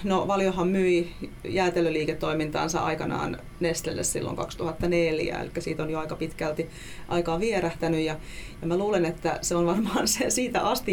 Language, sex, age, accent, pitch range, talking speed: Finnish, female, 30-49, native, 160-180 Hz, 150 wpm